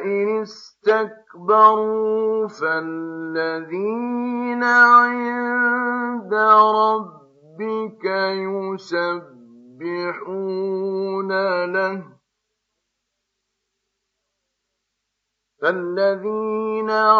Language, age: Arabic, 50-69